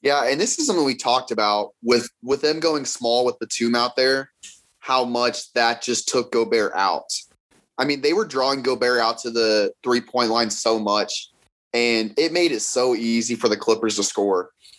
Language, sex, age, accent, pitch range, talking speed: English, male, 20-39, American, 115-135 Hz, 200 wpm